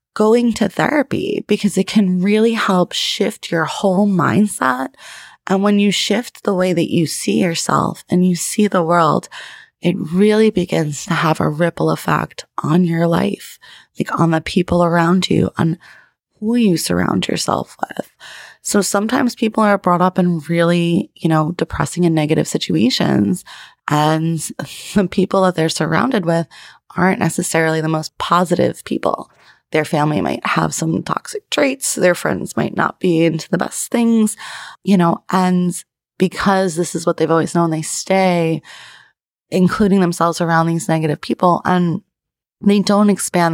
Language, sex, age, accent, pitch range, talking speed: English, female, 20-39, American, 165-195 Hz, 160 wpm